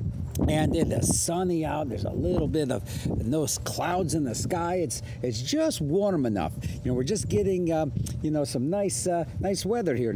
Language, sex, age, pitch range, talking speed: English, male, 60-79, 120-170 Hz, 200 wpm